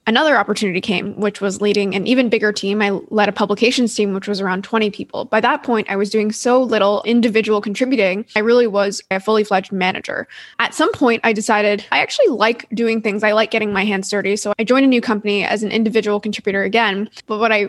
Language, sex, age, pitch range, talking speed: English, female, 20-39, 205-235 Hz, 225 wpm